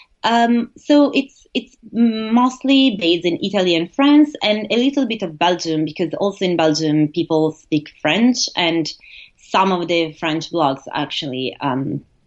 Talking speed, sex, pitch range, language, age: 150 wpm, female, 160-225 Hz, English, 30-49